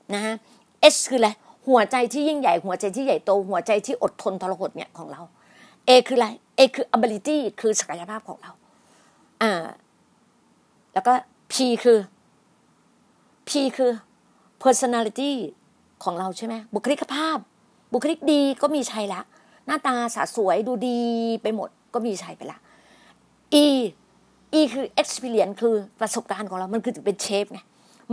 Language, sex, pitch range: Thai, female, 205-250 Hz